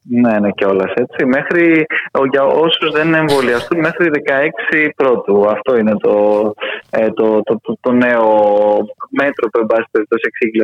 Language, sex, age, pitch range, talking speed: Greek, male, 20-39, 125-190 Hz, 140 wpm